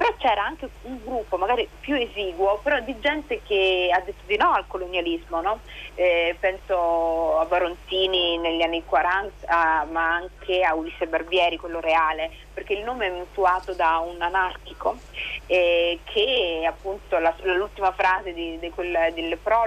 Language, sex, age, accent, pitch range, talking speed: Italian, female, 30-49, native, 170-200 Hz, 160 wpm